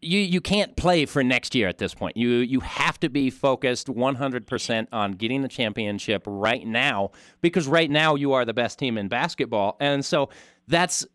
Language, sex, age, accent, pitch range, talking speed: English, male, 40-59, American, 115-145 Hz, 195 wpm